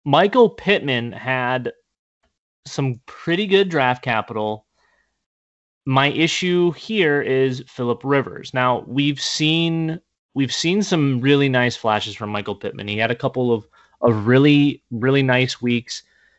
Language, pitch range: English, 115-140 Hz